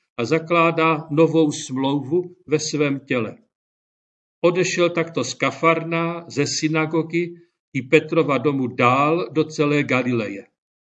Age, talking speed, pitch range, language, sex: 50-69, 110 wpm, 135-170 Hz, Czech, male